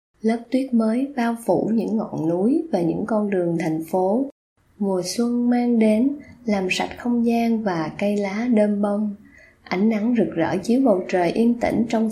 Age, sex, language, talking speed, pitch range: 20-39, female, Vietnamese, 185 wpm, 175-230 Hz